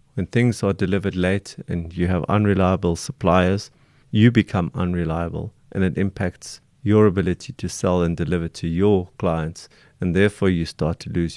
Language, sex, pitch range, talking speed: English, male, 90-115 Hz, 165 wpm